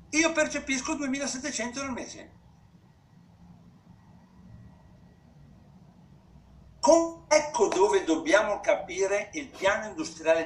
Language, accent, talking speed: Italian, native, 70 wpm